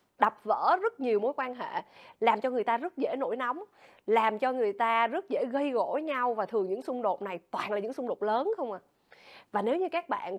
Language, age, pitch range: Vietnamese, 20-39, 225-335 Hz